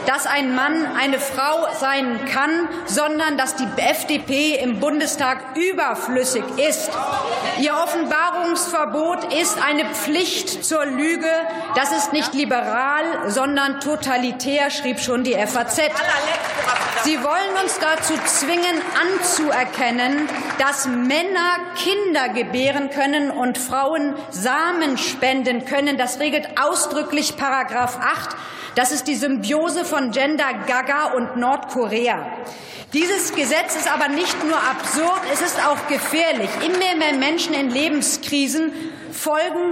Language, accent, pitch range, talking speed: German, German, 265-315 Hz, 120 wpm